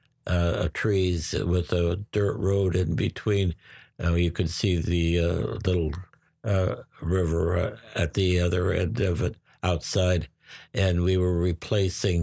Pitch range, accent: 85-100 Hz, American